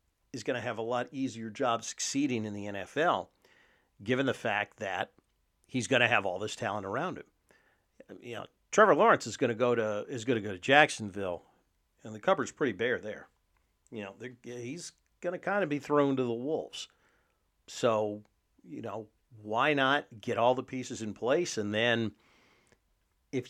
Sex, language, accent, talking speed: male, English, American, 185 wpm